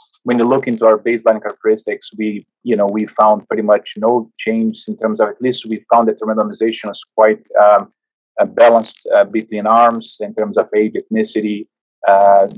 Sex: male